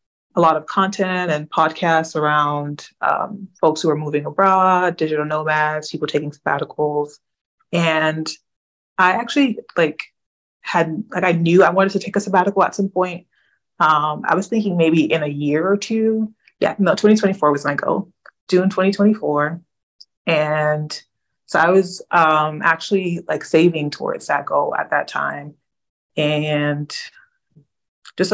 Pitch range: 150-185 Hz